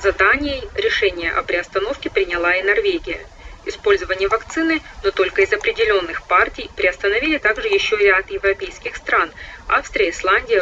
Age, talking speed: 20-39, 130 wpm